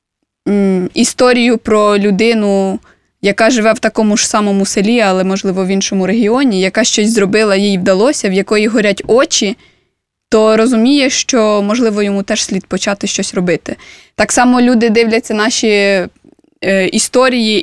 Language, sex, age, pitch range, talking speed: Russian, female, 20-39, 195-235 Hz, 135 wpm